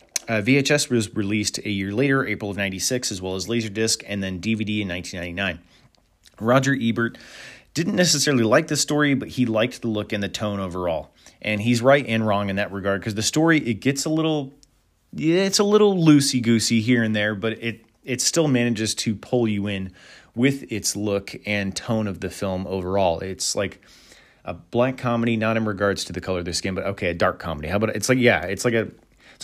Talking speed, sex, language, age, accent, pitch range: 210 wpm, male, English, 30-49, American, 95-125 Hz